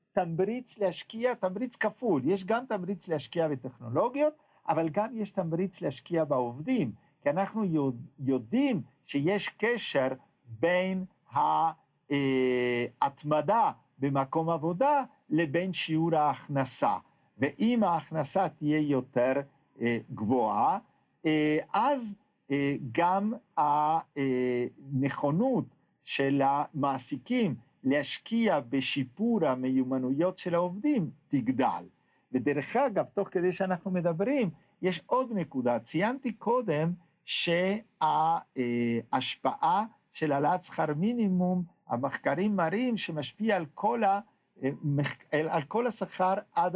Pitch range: 140-210 Hz